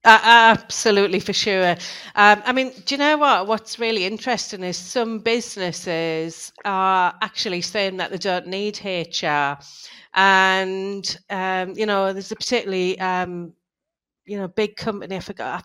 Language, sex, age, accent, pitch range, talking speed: English, female, 40-59, British, 180-210 Hz, 155 wpm